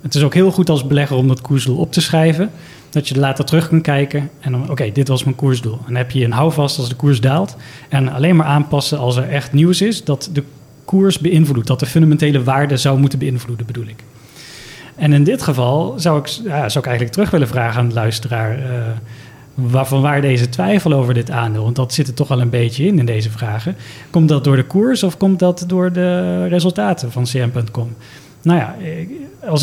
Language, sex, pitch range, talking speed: Dutch, male, 125-155 Hz, 225 wpm